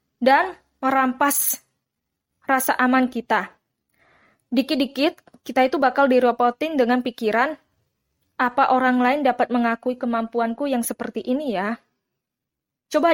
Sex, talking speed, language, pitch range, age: female, 105 wpm, Indonesian, 225-280 Hz, 20-39